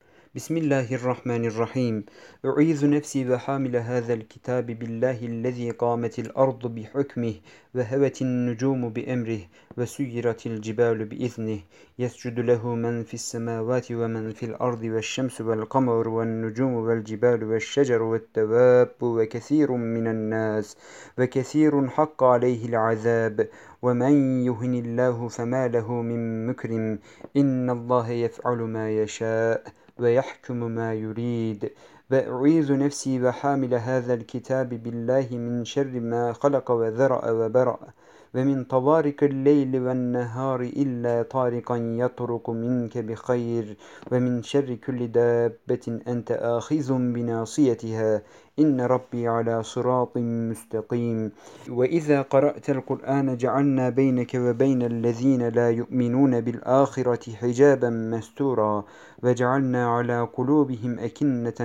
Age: 50-69